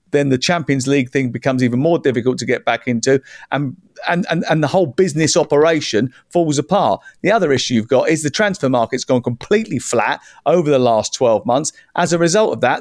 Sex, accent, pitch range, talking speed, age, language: male, British, 125-180 Hz, 210 wpm, 50-69, English